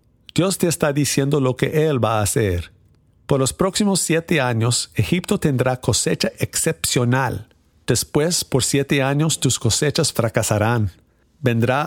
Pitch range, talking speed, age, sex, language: 110-145 Hz, 135 wpm, 50-69, male, English